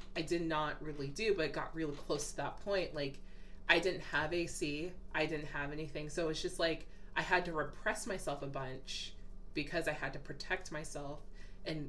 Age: 20-39